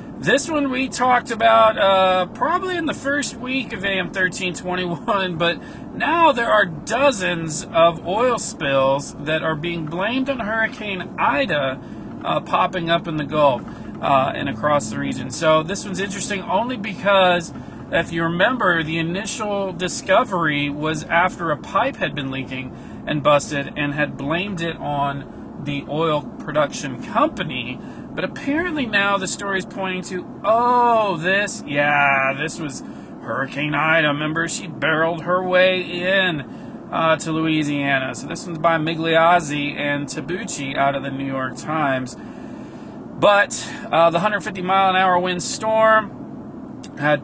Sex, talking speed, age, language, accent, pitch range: male, 145 wpm, 40-59, English, American, 150-200 Hz